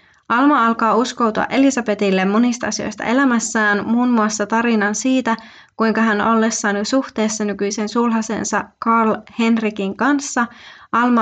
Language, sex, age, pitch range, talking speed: Finnish, female, 20-39, 205-240 Hz, 120 wpm